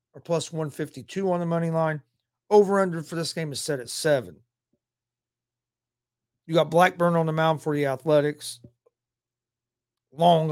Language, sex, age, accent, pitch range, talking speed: English, male, 40-59, American, 120-160 Hz, 145 wpm